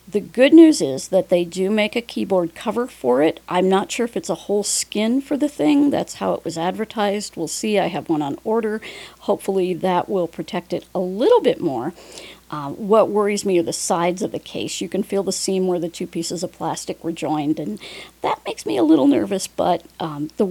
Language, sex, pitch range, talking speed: English, female, 175-220 Hz, 230 wpm